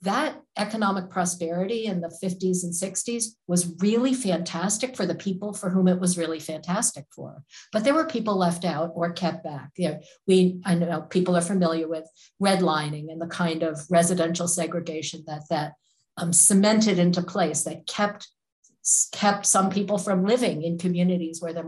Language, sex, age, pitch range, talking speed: English, female, 50-69, 165-200 Hz, 170 wpm